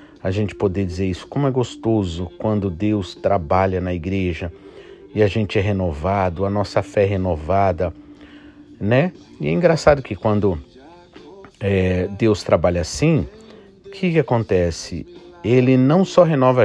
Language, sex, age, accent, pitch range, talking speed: Portuguese, male, 50-69, Brazilian, 95-130 Hz, 140 wpm